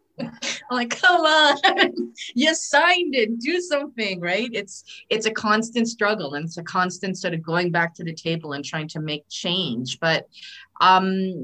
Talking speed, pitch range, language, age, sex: 175 wpm, 160-205 Hz, English, 30-49, female